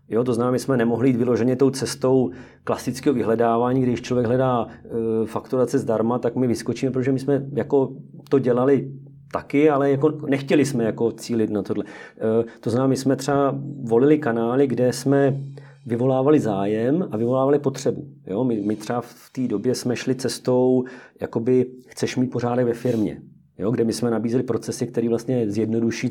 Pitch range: 115-135 Hz